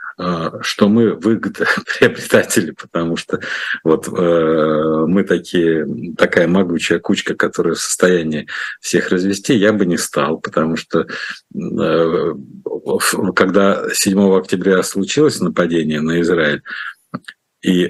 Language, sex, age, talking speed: Russian, male, 50-69, 110 wpm